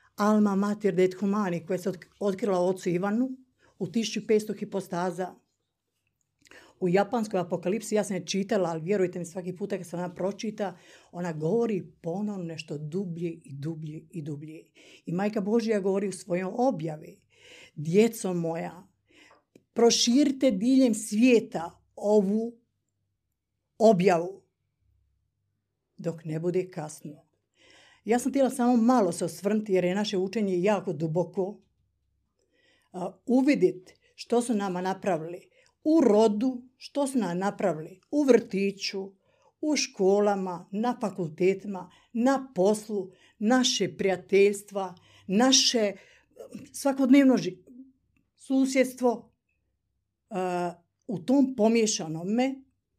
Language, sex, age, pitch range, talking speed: Croatian, female, 50-69, 175-230 Hz, 110 wpm